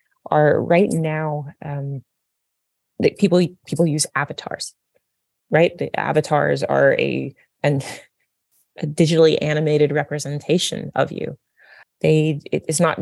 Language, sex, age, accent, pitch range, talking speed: English, female, 20-39, American, 140-160 Hz, 115 wpm